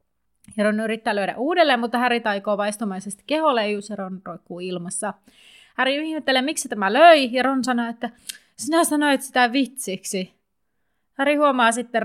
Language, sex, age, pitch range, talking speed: Finnish, female, 30-49, 195-255 Hz, 145 wpm